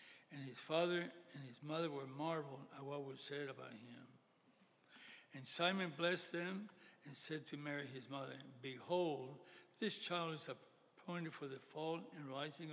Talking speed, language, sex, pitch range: 160 wpm, English, male, 135-170 Hz